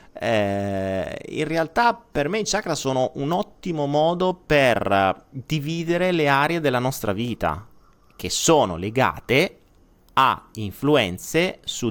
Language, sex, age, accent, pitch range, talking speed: Italian, male, 30-49, native, 100-150 Hz, 120 wpm